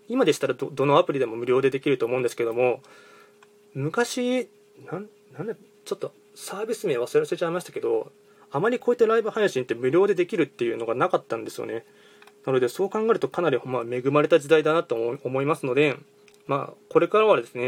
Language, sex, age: Japanese, male, 20-39